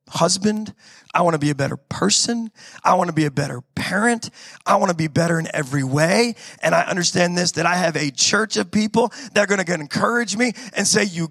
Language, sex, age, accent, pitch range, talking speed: English, male, 30-49, American, 180-255 Hz, 230 wpm